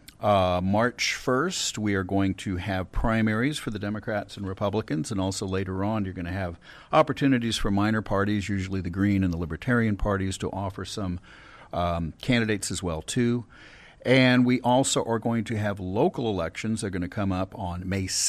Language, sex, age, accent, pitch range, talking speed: English, male, 50-69, American, 90-120 Hz, 185 wpm